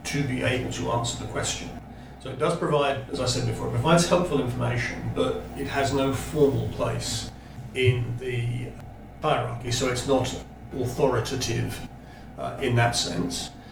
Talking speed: 155 wpm